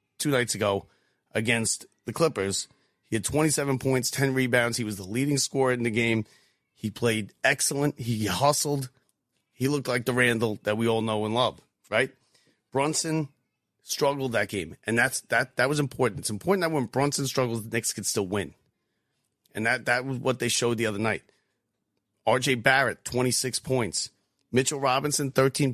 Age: 40-59